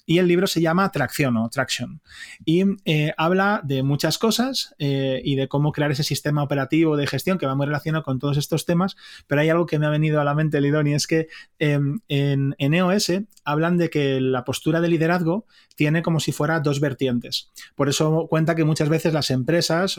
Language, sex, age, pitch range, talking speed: Spanish, male, 30-49, 145-180 Hz, 215 wpm